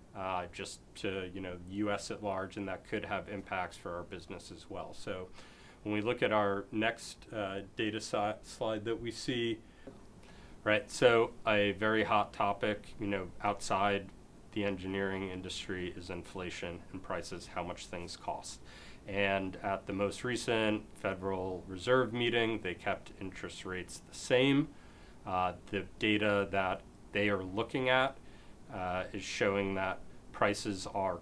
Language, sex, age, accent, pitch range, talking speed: English, male, 30-49, American, 95-110 Hz, 155 wpm